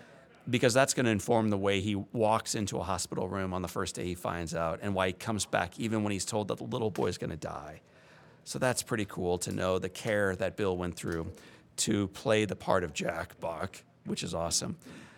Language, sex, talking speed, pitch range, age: English, male, 220 wpm, 90-110 Hz, 40-59